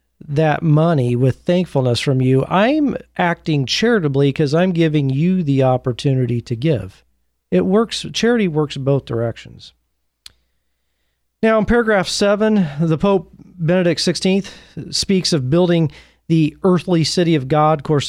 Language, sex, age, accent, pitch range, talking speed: English, male, 40-59, American, 135-180 Hz, 135 wpm